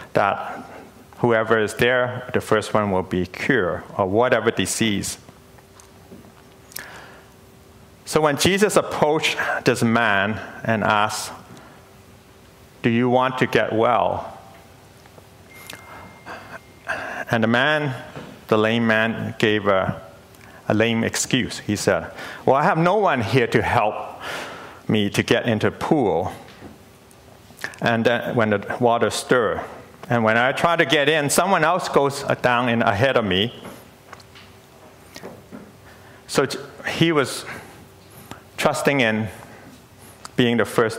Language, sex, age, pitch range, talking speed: English, male, 50-69, 105-130 Hz, 120 wpm